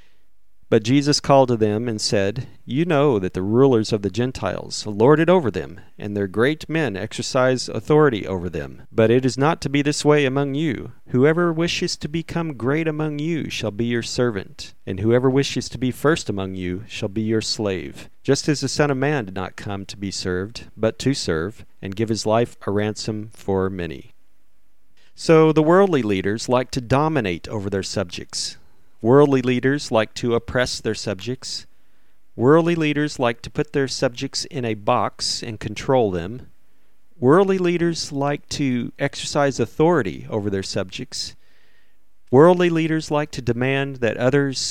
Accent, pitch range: American, 105-145 Hz